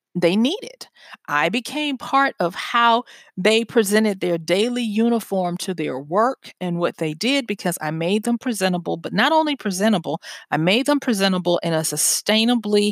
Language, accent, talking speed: English, American, 165 wpm